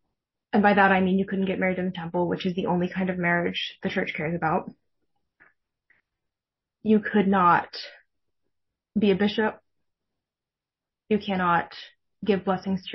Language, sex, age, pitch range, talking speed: English, female, 10-29, 175-210 Hz, 160 wpm